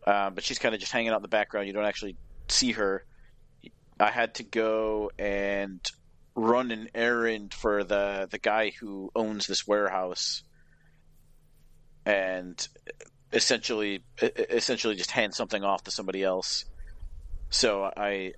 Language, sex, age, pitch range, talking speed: English, male, 40-59, 100-115 Hz, 145 wpm